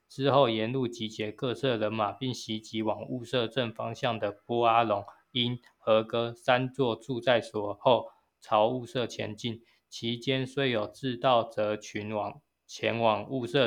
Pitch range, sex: 110-125 Hz, male